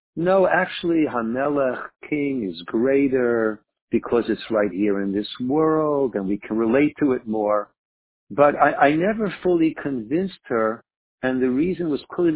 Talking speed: 155 wpm